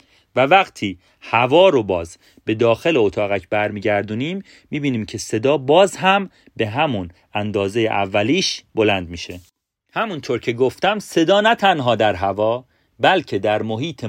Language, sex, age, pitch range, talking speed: Persian, male, 40-59, 105-145 Hz, 130 wpm